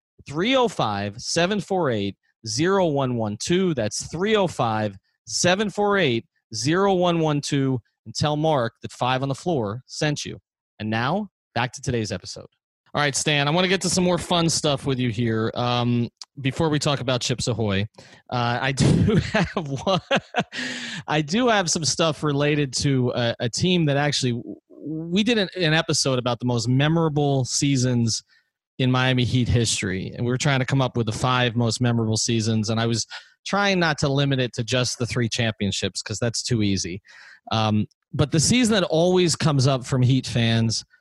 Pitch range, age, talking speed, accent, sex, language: 115-150 Hz, 30-49, 170 wpm, American, male, English